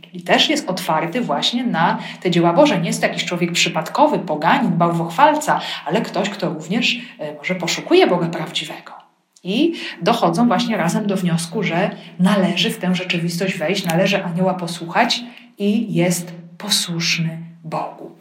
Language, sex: Polish, female